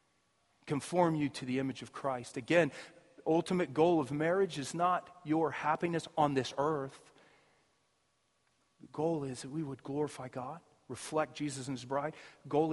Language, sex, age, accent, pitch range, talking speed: English, male, 40-59, American, 135-175 Hz, 165 wpm